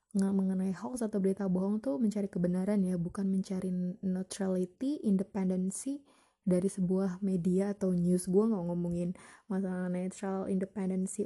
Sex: female